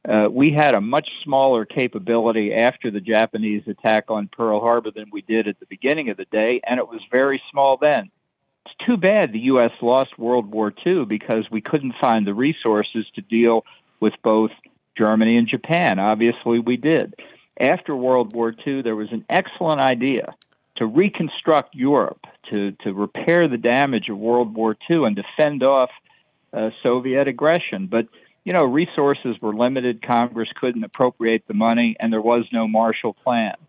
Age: 50-69